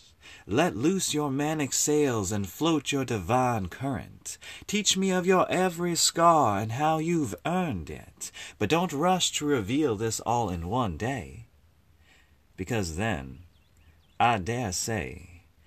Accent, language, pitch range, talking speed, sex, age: American, English, 90-145 Hz, 140 wpm, male, 30-49